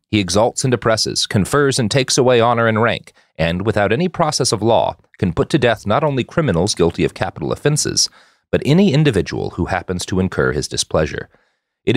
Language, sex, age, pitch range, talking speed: English, male, 40-59, 90-140 Hz, 190 wpm